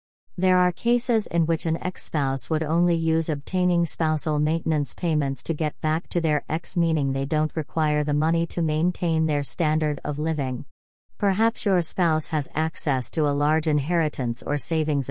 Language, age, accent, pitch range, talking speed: English, 40-59, American, 145-170 Hz, 170 wpm